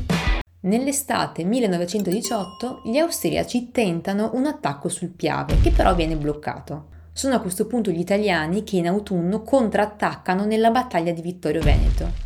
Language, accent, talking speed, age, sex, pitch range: Italian, native, 135 wpm, 20-39, female, 170-230 Hz